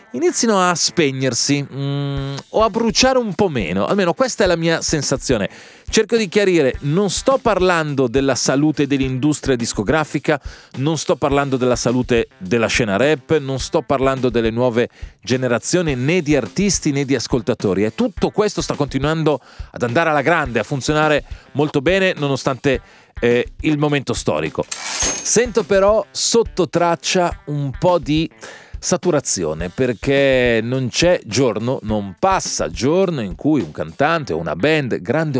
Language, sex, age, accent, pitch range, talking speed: Italian, male, 40-59, native, 125-170 Hz, 145 wpm